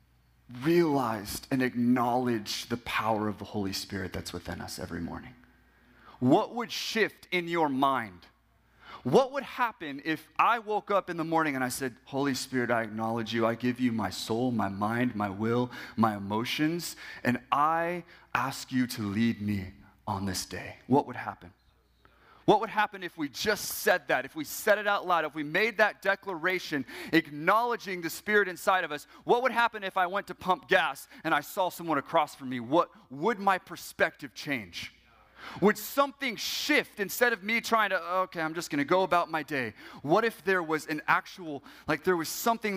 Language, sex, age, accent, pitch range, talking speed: English, male, 30-49, American, 120-190 Hz, 190 wpm